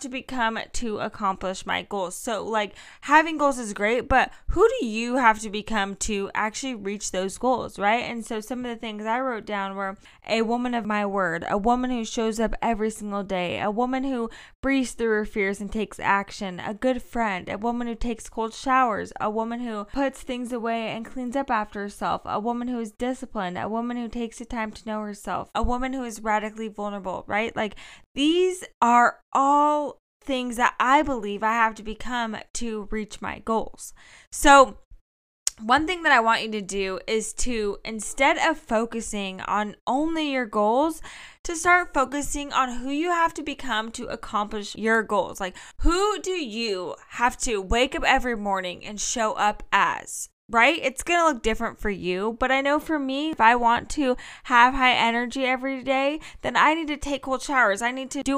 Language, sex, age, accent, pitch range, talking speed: English, female, 10-29, American, 215-265 Hz, 200 wpm